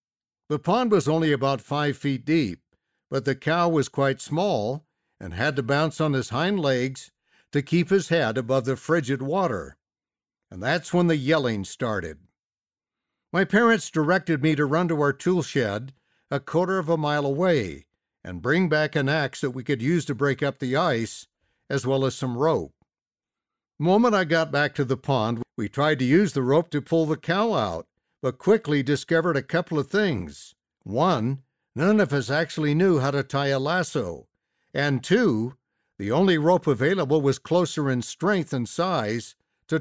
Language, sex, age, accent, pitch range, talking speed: English, male, 60-79, American, 130-170 Hz, 180 wpm